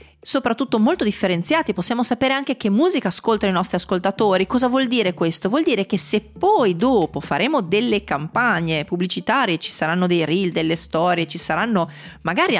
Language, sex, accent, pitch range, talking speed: Italian, female, native, 165-215 Hz, 165 wpm